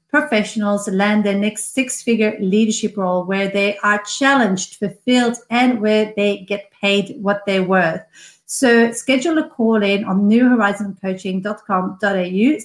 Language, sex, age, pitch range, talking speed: English, female, 40-59, 200-250 Hz, 130 wpm